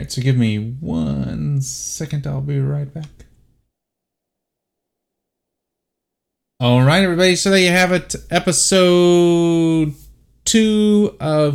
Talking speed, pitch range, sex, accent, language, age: 105 wpm, 125-165 Hz, male, American, English, 30-49